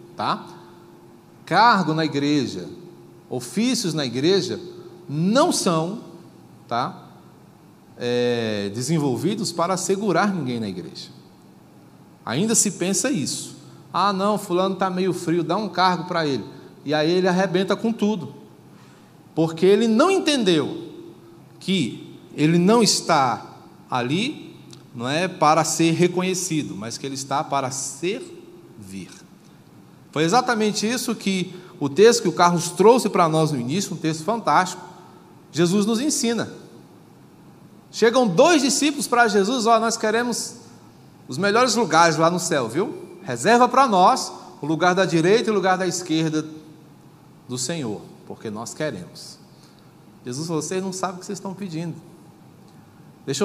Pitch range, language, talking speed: 160-205 Hz, Portuguese, 135 wpm